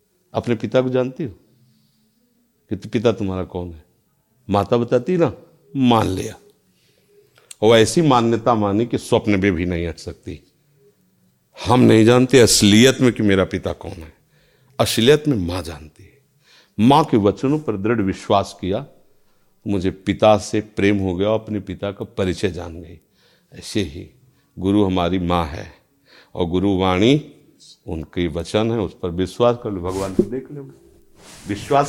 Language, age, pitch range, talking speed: Hindi, 50-69, 95-135 Hz, 155 wpm